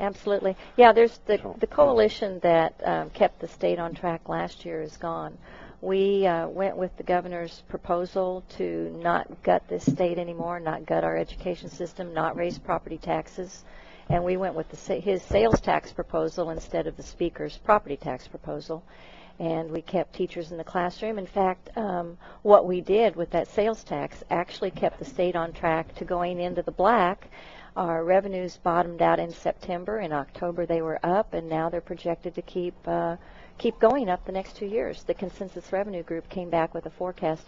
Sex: female